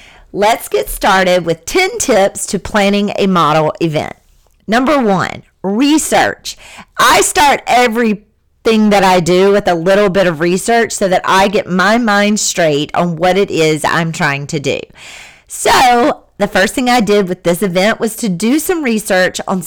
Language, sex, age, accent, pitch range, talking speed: English, female, 40-59, American, 180-245 Hz, 170 wpm